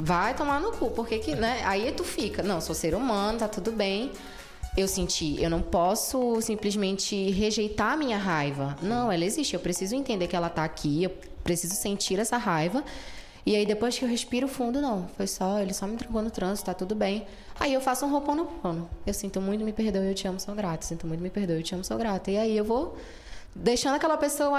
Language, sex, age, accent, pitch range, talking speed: Portuguese, female, 20-39, Brazilian, 185-250 Hz, 230 wpm